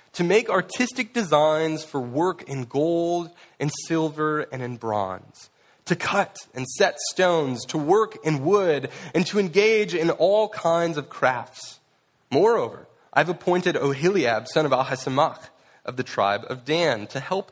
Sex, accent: male, American